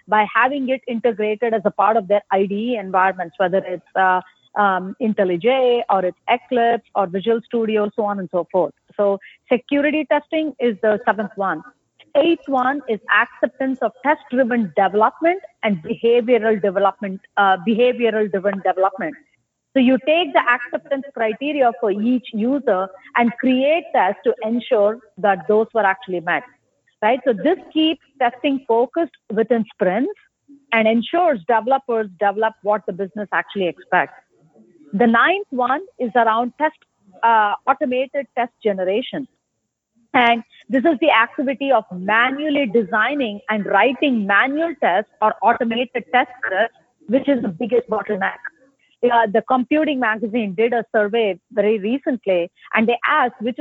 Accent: Indian